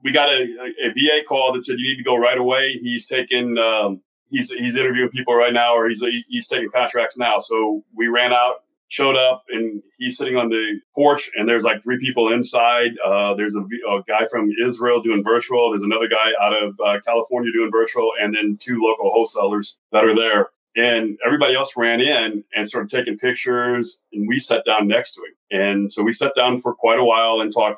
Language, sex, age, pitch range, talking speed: English, male, 30-49, 110-125 Hz, 220 wpm